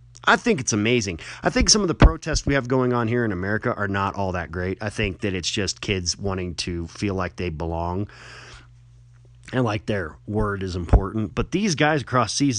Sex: male